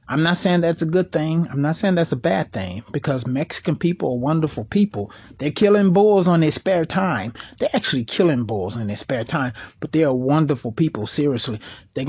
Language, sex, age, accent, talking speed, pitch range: English, male, 30-49, American, 210 wpm, 115-155 Hz